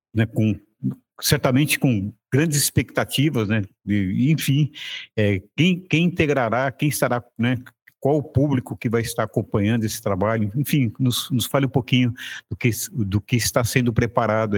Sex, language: male, Portuguese